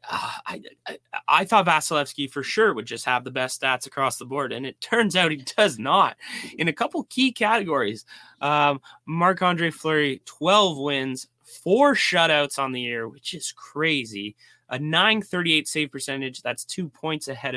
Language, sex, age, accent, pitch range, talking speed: English, male, 20-39, American, 125-155 Hz, 170 wpm